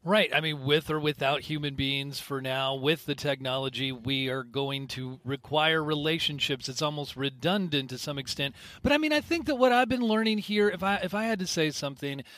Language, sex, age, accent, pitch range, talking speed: English, male, 40-59, American, 140-180 Hz, 215 wpm